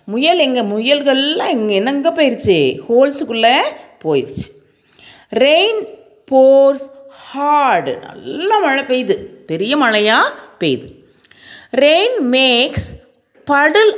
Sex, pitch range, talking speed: female, 205-295 Hz, 85 wpm